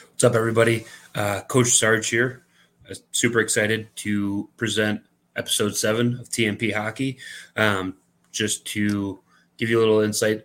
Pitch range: 95-110 Hz